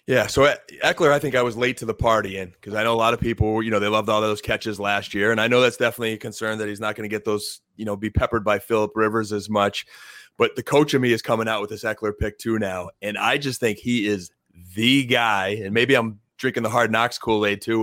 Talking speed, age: 280 wpm, 30-49